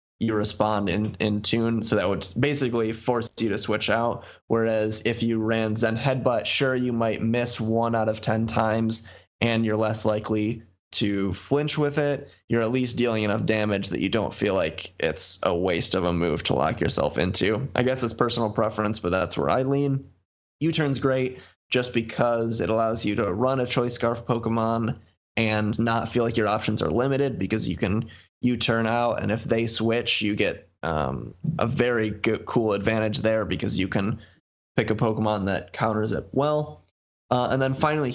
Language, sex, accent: English, male, American